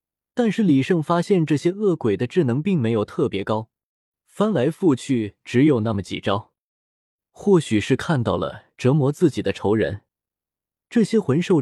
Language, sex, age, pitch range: Chinese, male, 20-39, 115-175 Hz